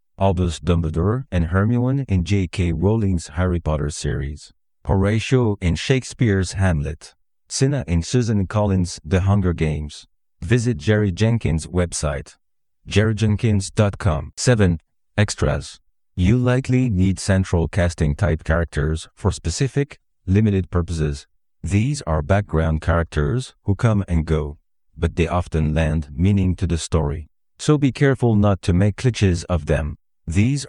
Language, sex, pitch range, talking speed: English, male, 80-105 Hz, 125 wpm